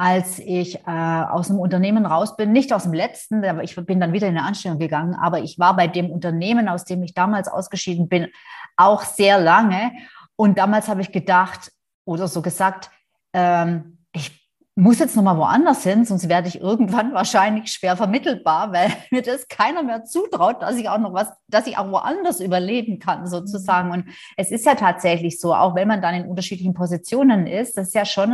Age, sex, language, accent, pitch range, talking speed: 30-49, female, German, German, 180-230 Hz, 200 wpm